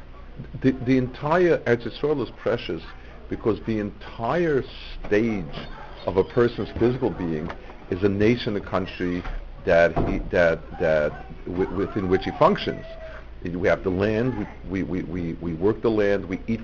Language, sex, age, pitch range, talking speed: English, male, 50-69, 75-110 Hz, 150 wpm